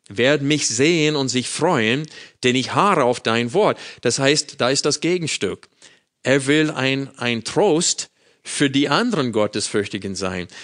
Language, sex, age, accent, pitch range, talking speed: German, male, 50-69, German, 120-150 Hz, 160 wpm